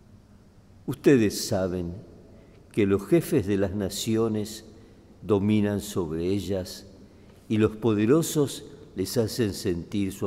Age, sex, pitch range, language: 50-69, male, 95-115 Hz, Spanish